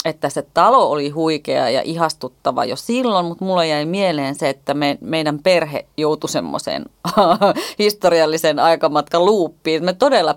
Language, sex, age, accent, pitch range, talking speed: Finnish, female, 30-49, native, 145-175 Hz, 145 wpm